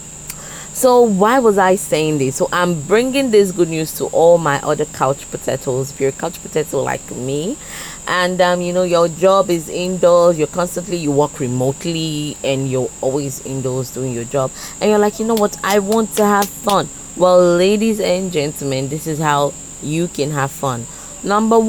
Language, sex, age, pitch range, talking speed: English, female, 20-39, 140-195 Hz, 190 wpm